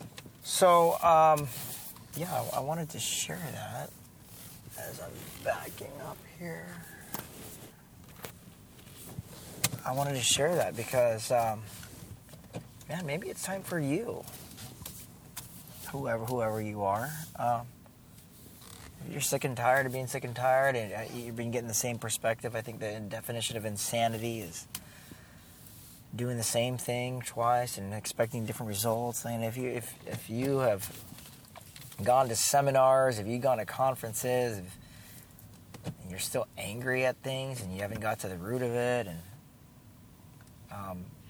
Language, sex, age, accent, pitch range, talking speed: English, male, 30-49, American, 105-125 Hz, 140 wpm